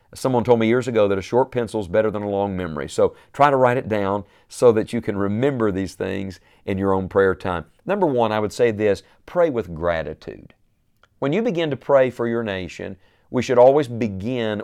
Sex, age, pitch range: male, 50-69, 100-125 Hz